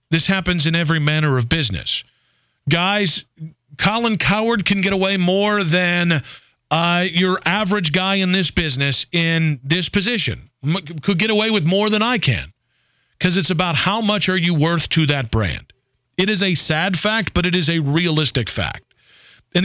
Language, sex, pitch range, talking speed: English, male, 125-180 Hz, 170 wpm